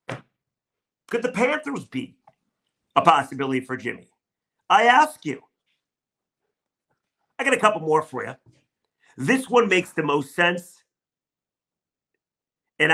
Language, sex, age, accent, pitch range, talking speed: English, male, 50-69, American, 150-190 Hz, 115 wpm